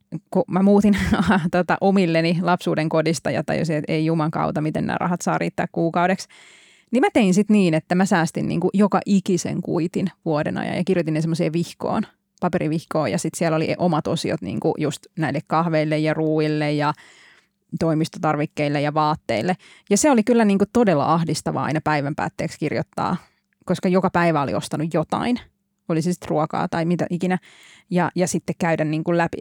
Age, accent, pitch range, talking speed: 20-39, native, 160-195 Hz, 165 wpm